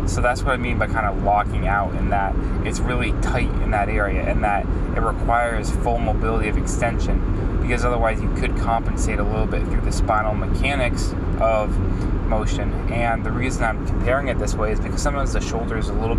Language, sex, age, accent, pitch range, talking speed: English, male, 20-39, American, 95-110 Hz, 210 wpm